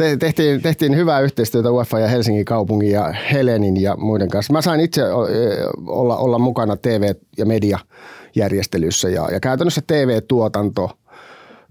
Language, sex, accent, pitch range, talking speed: Finnish, male, native, 100-130 Hz, 140 wpm